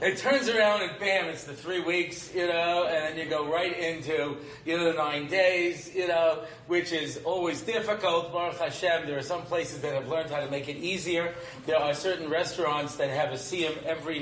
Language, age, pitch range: English, 40-59, 150-175 Hz